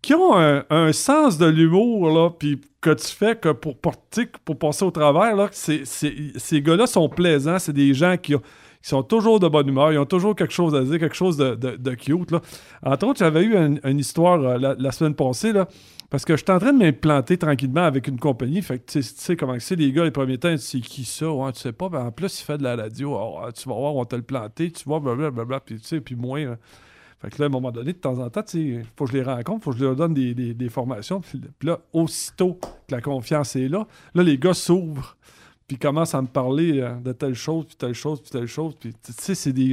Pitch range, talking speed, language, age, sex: 135-170 Hz, 270 wpm, French, 50-69, male